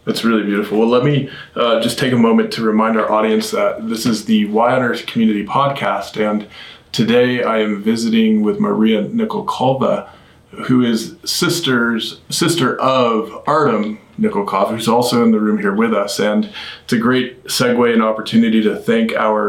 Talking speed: 180 wpm